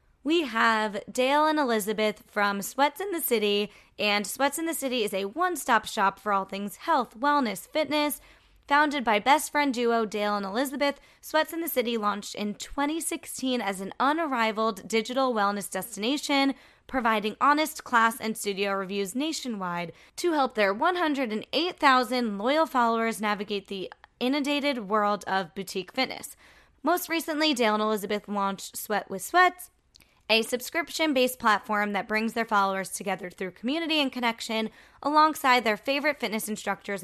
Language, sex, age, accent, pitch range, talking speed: English, female, 20-39, American, 205-285 Hz, 150 wpm